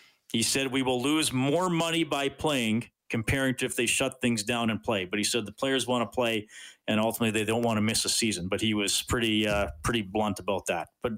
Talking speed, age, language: 240 wpm, 40-59, English